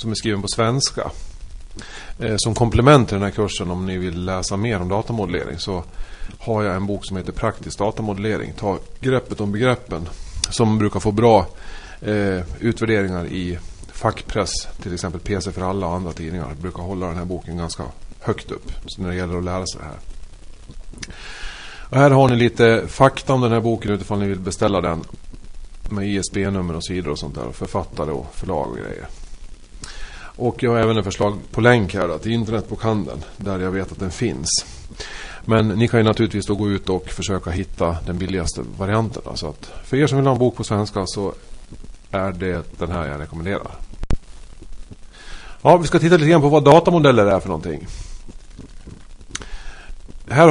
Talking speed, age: 185 wpm, 30-49